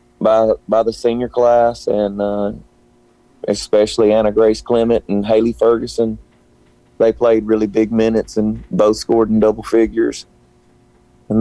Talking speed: 135 wpm